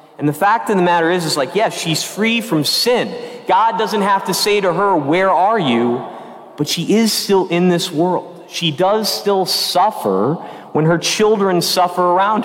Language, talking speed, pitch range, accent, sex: English, 200 wpm, 150-190 Hz, American, male